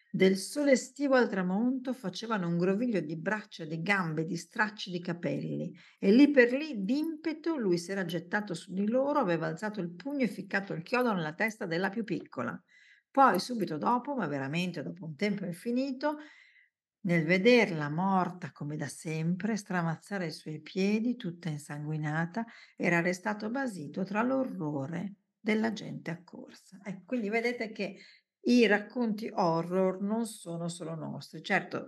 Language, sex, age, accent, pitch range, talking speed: Italian, female, 50-69, native, 165-225 Hz, 155 wpm